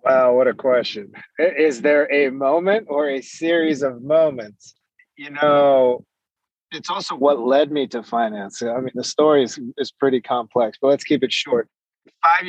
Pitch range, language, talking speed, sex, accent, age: 125-150 Hz, English, 175 wpm, male, American, 30-49